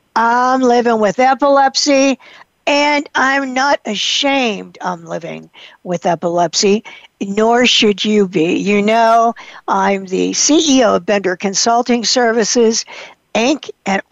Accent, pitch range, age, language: American, 195-245 Hz, 60-79, English